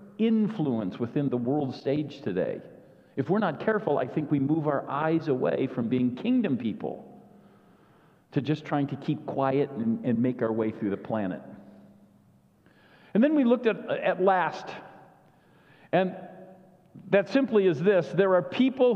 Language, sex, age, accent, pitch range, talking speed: English, male, 50-69, American, 155-220 Hz, 160 wpm